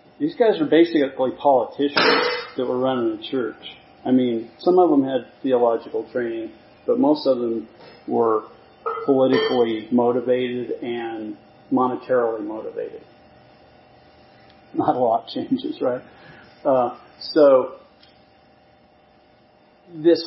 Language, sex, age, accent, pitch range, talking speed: English, male, 40-59, American, 105-140 Hz, 105 wpm